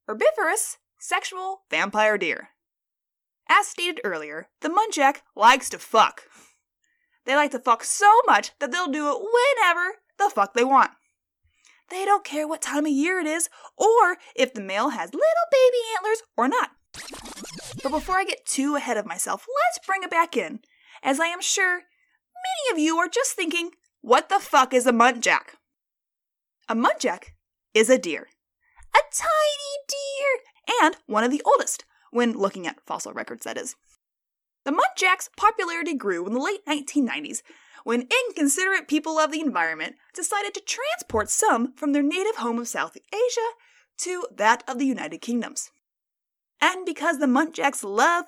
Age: 20-39